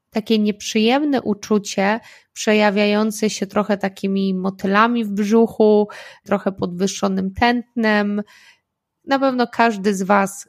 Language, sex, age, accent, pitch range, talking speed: Polish, female, 20-39, native, 195-235 Hz, 105 wpm